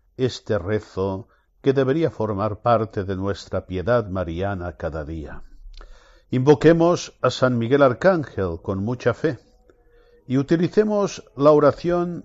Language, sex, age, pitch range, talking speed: Spanish, male, 60-79, 95-145 Hz, 120 wpm